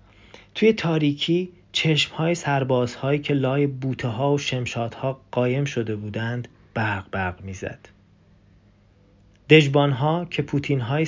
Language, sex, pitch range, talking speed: Persian, male, 105-140 Hz, 105 wpm